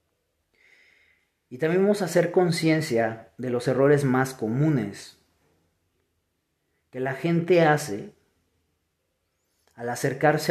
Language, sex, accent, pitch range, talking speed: Spanish, male, Mexican, 105-155 Hz, 95 wpm